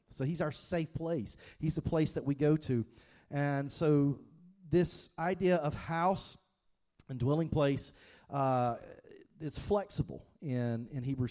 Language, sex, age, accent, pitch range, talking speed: English, male, 40-59, American, 125-160 Hz, 145 wpm